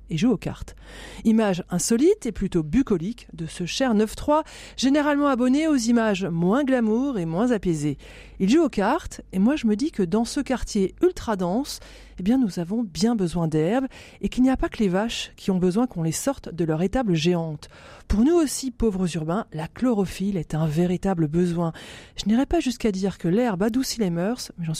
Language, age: French, 40-59